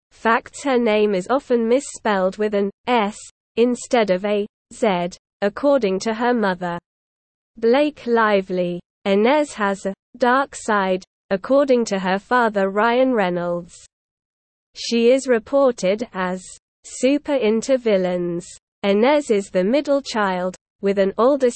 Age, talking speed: 20-39, 125 wpm